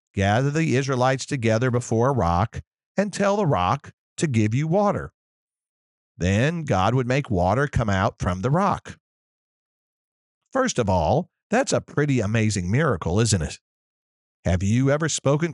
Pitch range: 105-150 Hz